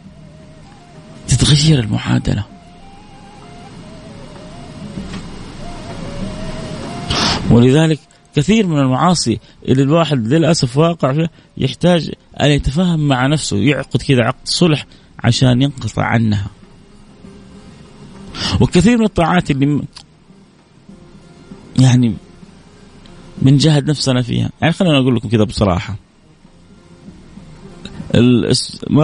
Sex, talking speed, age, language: male, 80 wpm, 30-49, Arabic